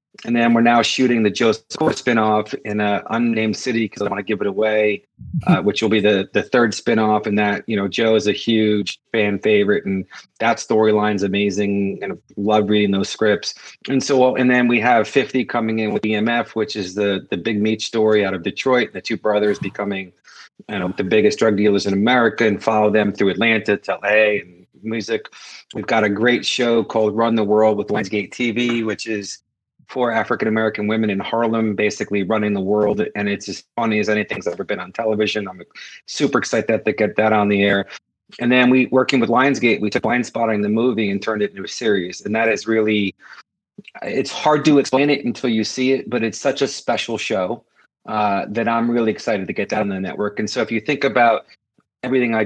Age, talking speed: 40-59, 215 wpm